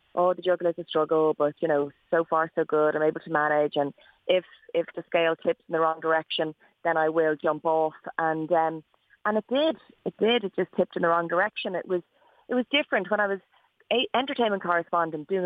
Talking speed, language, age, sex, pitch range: 225 wpm, English, 30-49, female, 155-180 Hz